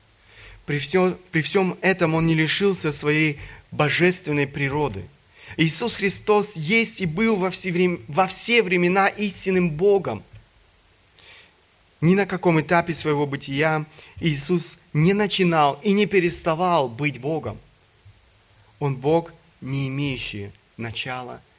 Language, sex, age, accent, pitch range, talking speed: Russian, male, 30-49, native, 145-190 Hz, 110 wpm